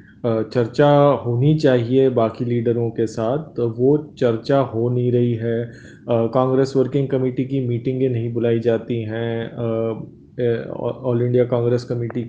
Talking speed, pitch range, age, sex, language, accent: 130 wpm, 120-155 Hz, 20-39, male, Hindi, native